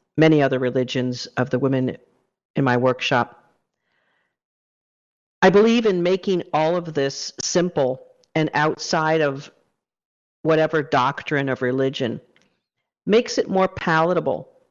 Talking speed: 115 wpm